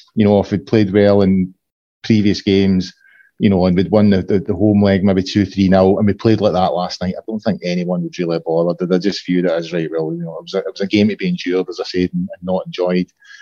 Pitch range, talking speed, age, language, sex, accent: 95-110 Hz, 275 wpm, 30-49, English, male, British